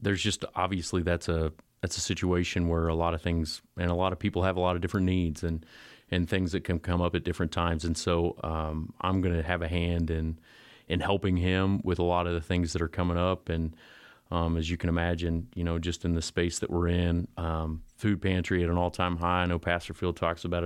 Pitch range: 85-90 Hz